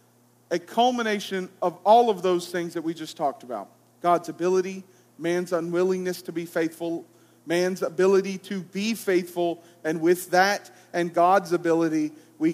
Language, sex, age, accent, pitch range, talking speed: English, male, 40-59, American, 175-220 Hz, 150 wpm